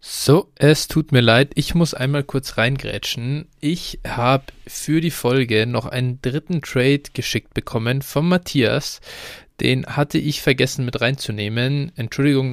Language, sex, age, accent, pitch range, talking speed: German, male, 20-39, German, 120-145 Hz, 145 wpm